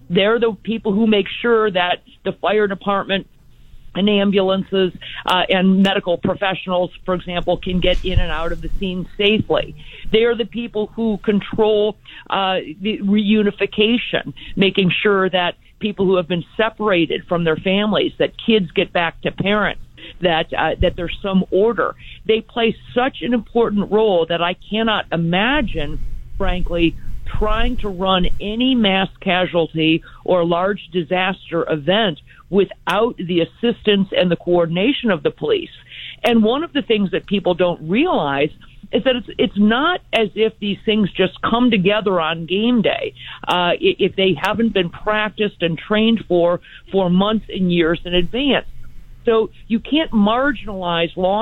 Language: English